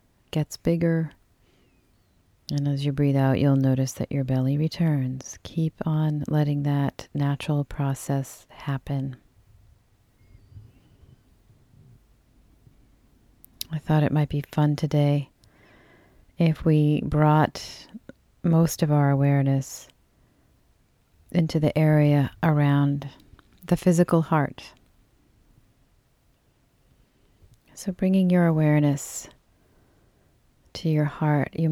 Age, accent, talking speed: 40-59, American, 95 wpm